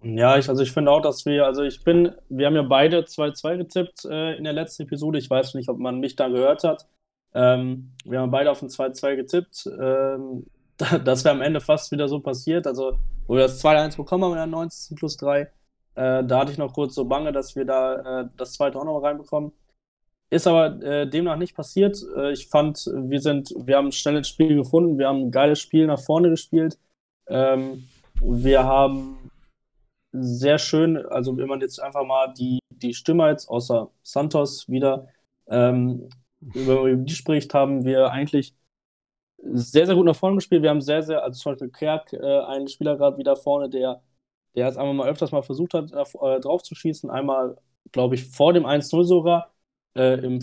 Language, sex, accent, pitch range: German, male, German, 130-155 Hz